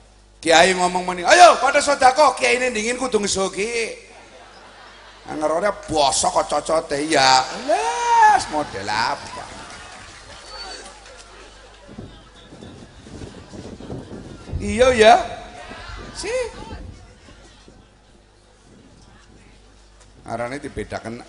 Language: Indonesian